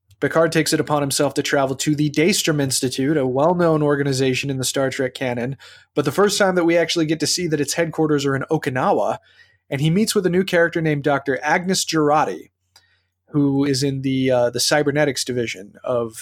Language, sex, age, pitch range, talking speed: English, male, 20-39, 130-165 Hz, 205 wpm